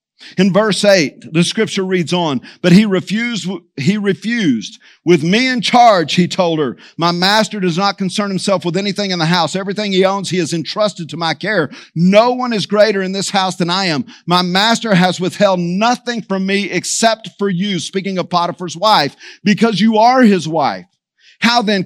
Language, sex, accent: English, male, American